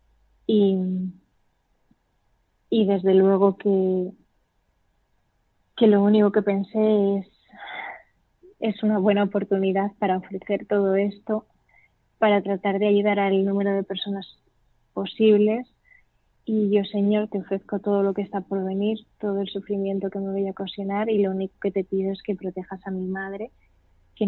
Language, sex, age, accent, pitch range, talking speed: Spanish, female, 20-39, Spanish, 190-205 Hz, 150 wpm